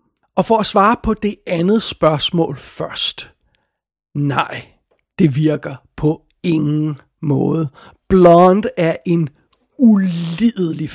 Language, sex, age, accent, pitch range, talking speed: Danish, male, 60-79, native, 160-190 Hz, 105 wpm